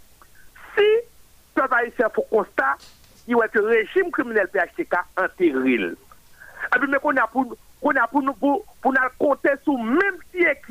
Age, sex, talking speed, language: 50-69, male, 170 wpm, French